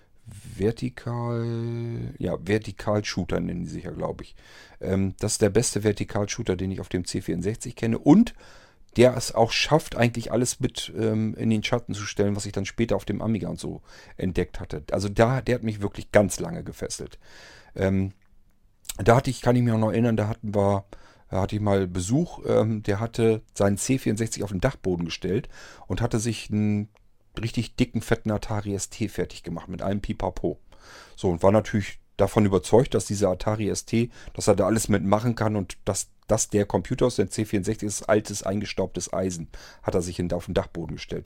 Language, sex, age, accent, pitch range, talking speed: German, male, 40-59, German, 100-115 Hz, 185 wpm